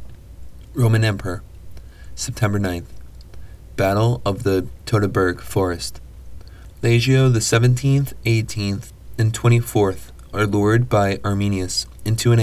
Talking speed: 100 wpm